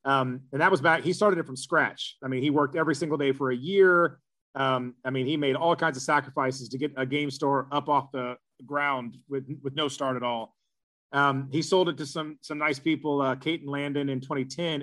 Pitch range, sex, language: 135-160 Hz, male, English